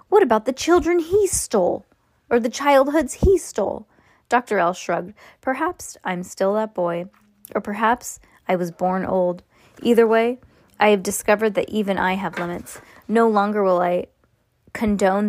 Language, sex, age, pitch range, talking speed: English, female, 20-39, 180-220 Hz, 155 wpm